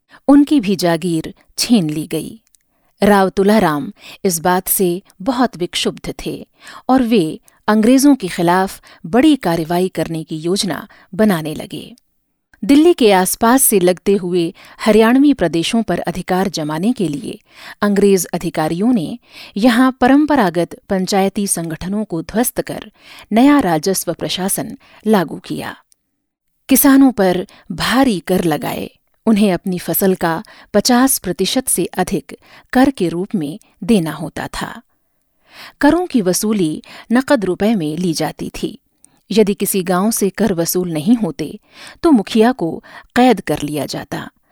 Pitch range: 175-240 Hz